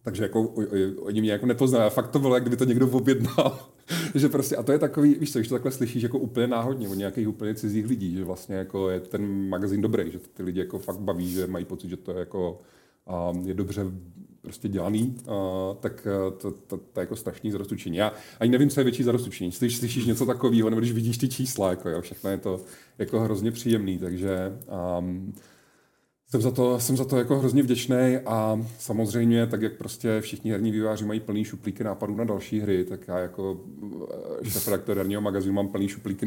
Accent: native